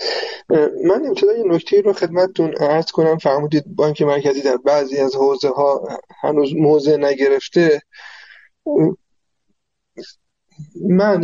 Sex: male